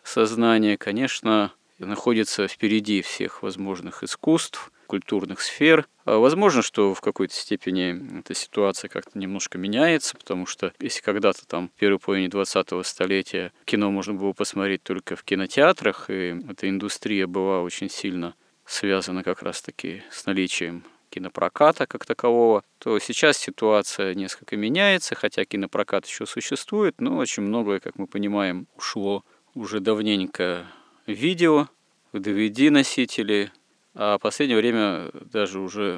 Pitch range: 95-110 Hz